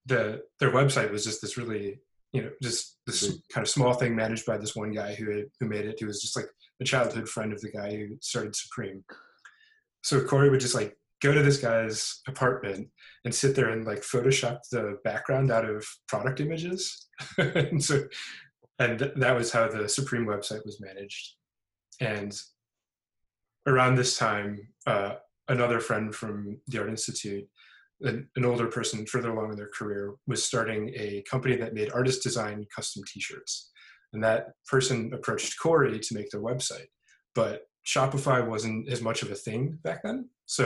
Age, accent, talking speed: 20-39, American, 175 wpm